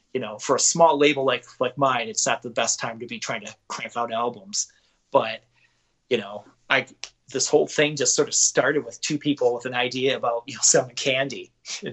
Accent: American